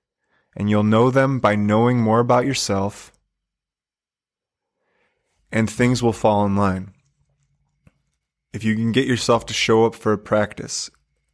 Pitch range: 110-130 Hz